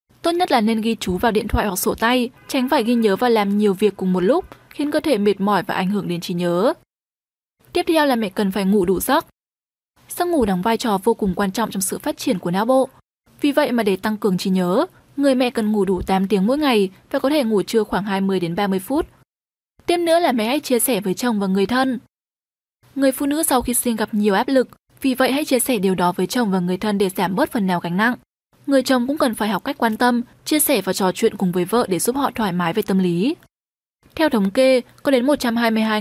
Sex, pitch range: female, 195-260 Hz